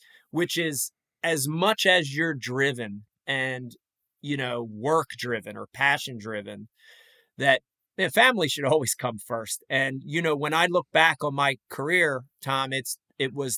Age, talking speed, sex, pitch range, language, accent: 30-49, 155 wpm, male, 125-170 Hz, English, American